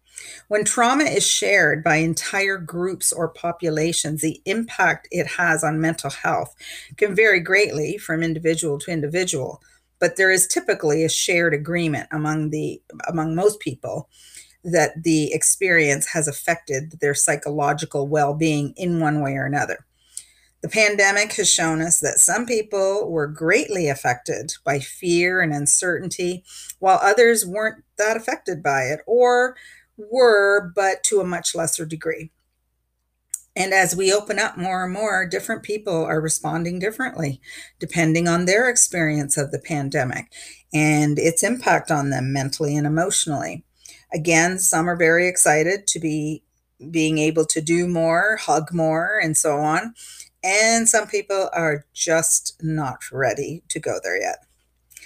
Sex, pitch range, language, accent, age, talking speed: female, 155-195 Hz, English, American, 40-59, 145 wpm